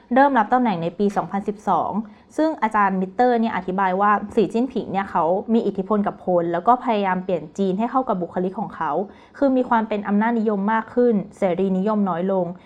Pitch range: 195-240 Hz